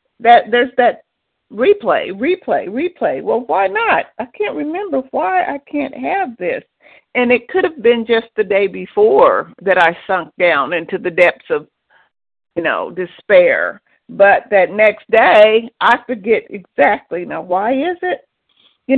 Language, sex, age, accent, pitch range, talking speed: English, female, 50-69, American, 185-240 Hz, 155 wpm